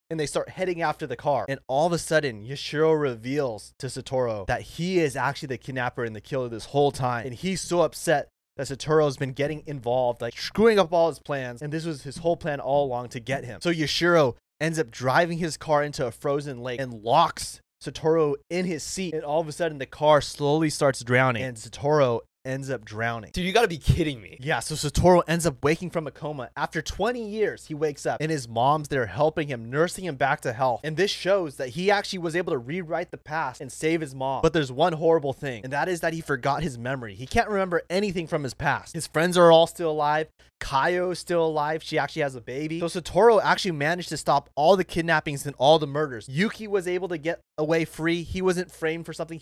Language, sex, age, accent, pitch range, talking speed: English, male, 20-39, American, 135-170 Hz, 235 wpm